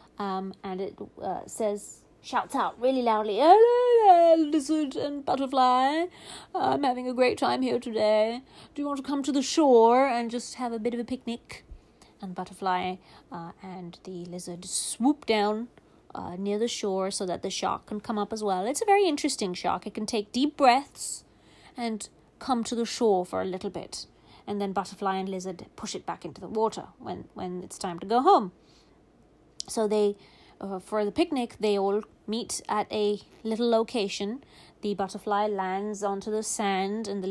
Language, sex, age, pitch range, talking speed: English, female, 30-49, 195-250 Hz, 185 wpm